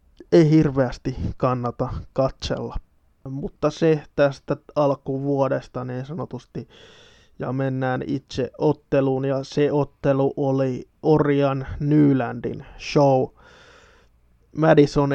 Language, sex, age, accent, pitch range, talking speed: Finnish, male, 20-39, native, 130-145 Hz, 85 wpm